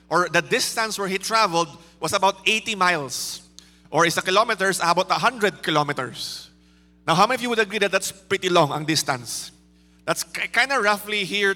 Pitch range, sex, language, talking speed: 155-200 Hz, male, English, 185 wpm